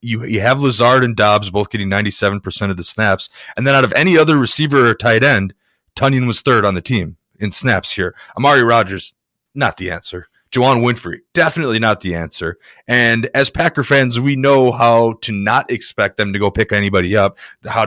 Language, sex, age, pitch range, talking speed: English, male, 30-49, 100-130 Hz, 205 wpm